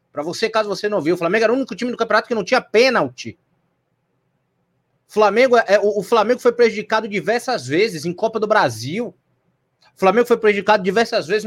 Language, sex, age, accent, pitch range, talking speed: Portuguese, male, 20-39, Brazilian, 180-235 Hz, 190 wpm